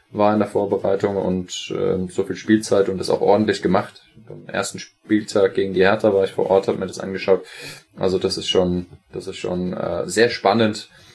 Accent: German